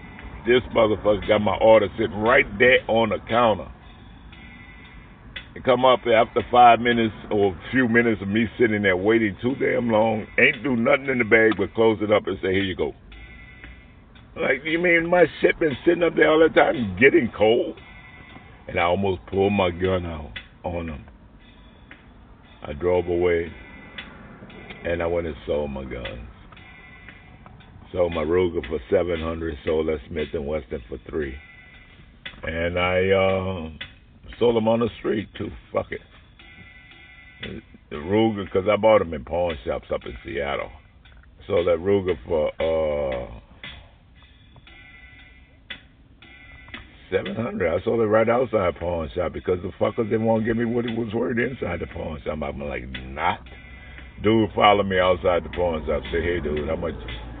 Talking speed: 165 wpm